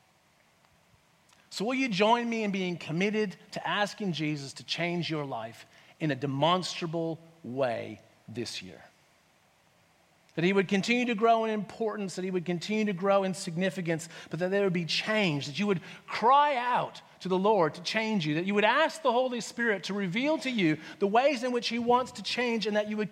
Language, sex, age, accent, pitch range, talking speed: English, male, 40-59, American, 180-255 Hz, 200 wpm